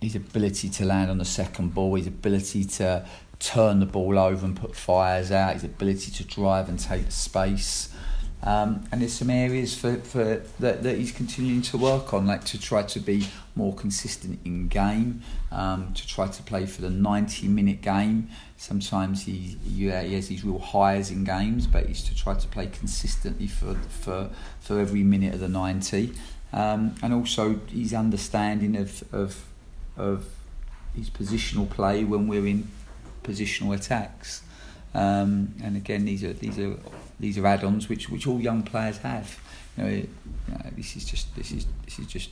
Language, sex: English, male